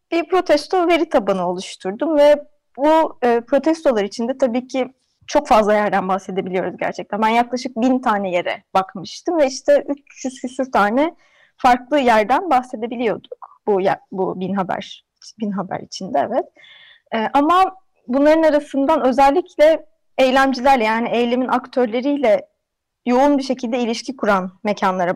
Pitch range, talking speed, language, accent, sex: 200-285 Hz, 130 wpm, Turkish, native, female